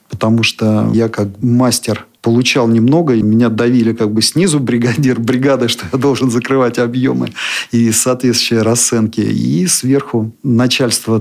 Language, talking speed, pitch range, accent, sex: Russian, 140 wpm, 110-130 Hz, native, male